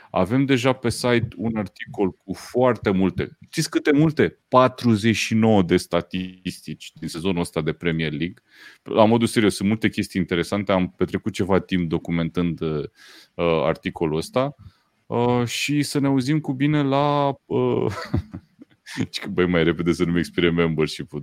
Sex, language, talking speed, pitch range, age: male, Romanian, 135 wpm, 85-115 Hz, 30-49